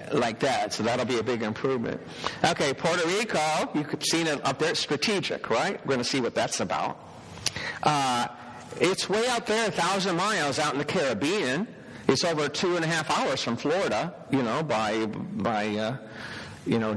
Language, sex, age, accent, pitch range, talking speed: English, male, 50-69, American, 125-165 Hz, 195 wpm